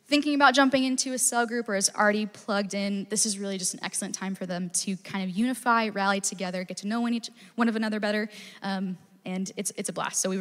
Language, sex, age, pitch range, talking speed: English, female, 10-29, 195-230 Hz, 255 wpm